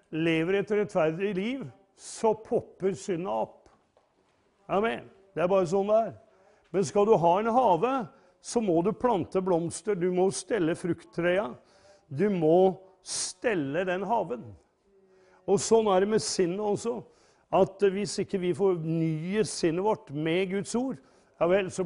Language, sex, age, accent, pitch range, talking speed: English, male, 50-69, Swedish, 145-195 Hz, 155 wpm